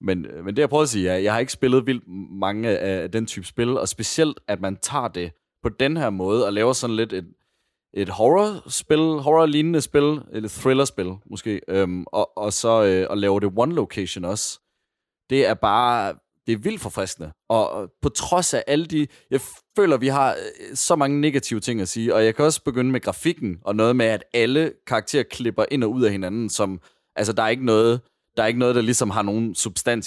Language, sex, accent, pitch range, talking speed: Danish, male, native, 95-120 Hz, 220 wpm